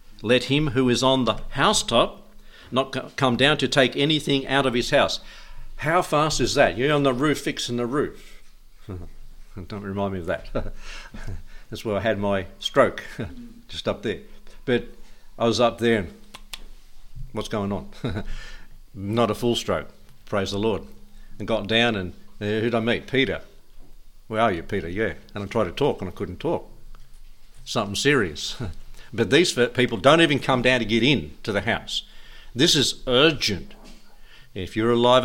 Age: 60-79